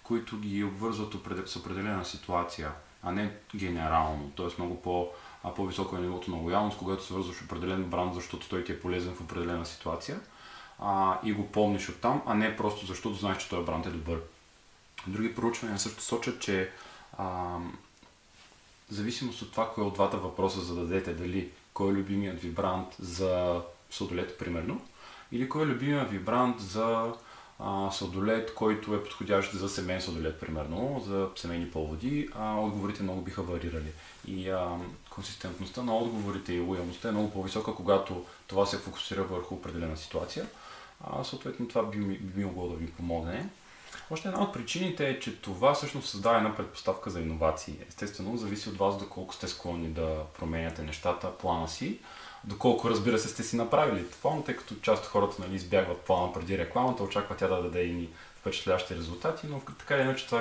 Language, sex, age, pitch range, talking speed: English, male, 30-49, 90-110 Hz, 170 wpm